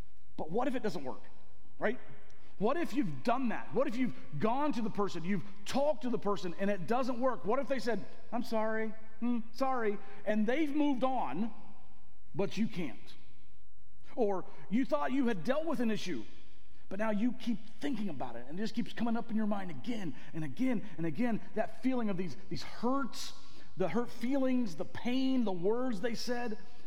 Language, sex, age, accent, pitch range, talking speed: English, male, 40-59, American, 180-245 Hz, 195 wpm